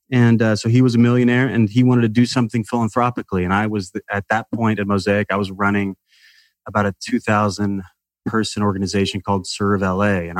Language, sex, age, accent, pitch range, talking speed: English, male, 30-49, American, 95-115 Hz, 200 wpm